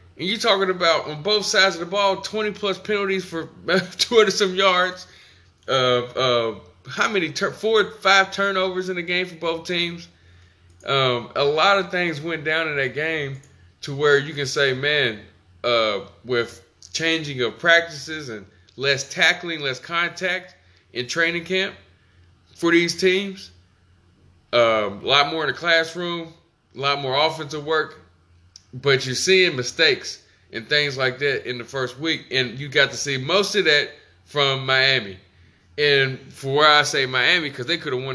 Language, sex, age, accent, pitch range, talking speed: English, male, 20-39, American, 110-170 Hz, 165 wpm